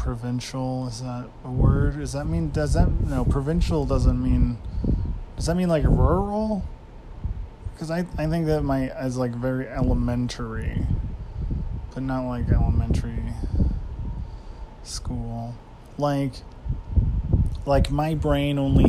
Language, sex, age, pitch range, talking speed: English, male, 20-39, 95-130 Hz, 125 wpm